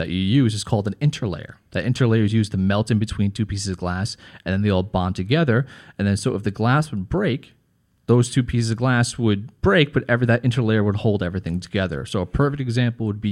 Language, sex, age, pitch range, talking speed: English, male, 30-49, 100-130 Hz, 240 wpm